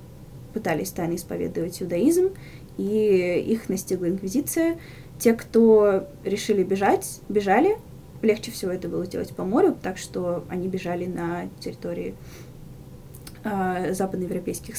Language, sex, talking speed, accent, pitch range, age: Russian, female, 115 wpm, native, 190-250 Hz, 10-29